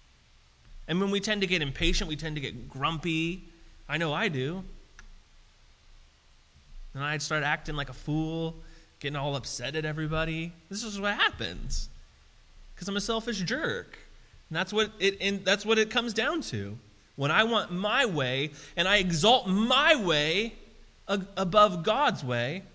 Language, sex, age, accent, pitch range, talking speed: English, male, 20-39, American, 145-210 Hz, 165 wpm